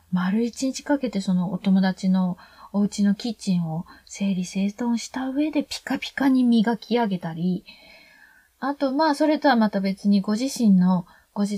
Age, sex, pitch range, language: 20-39, female, 200-305 Hz, Japanese